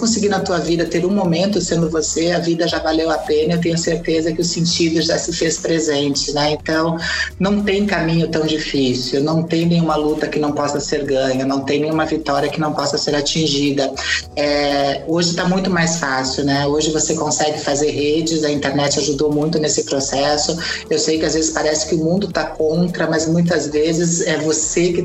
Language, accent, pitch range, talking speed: Portuguese, Brazilian, 150-170 Hz, 205 wpm